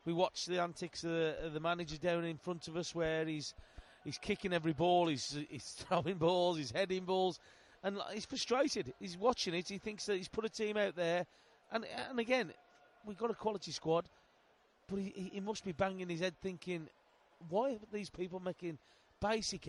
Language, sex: English, male